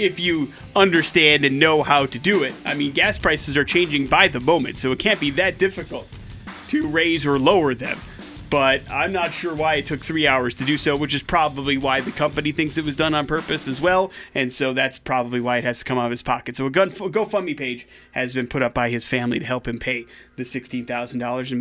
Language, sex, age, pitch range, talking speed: English, male, 30-49, 135-165 Hz, 240 wpm